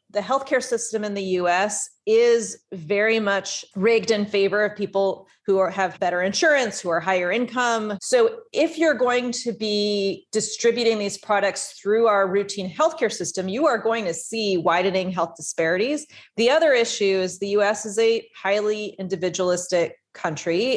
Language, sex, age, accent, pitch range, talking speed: English, female, 30-49, American, 185-220 Hz, 160 wpm